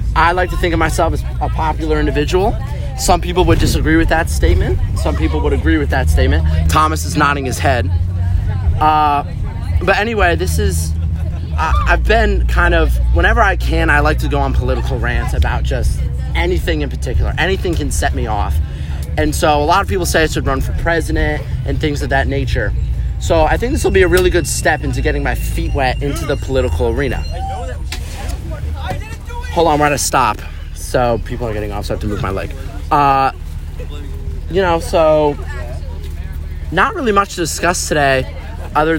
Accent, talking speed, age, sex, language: American, 190 wpm, 30-49, male, English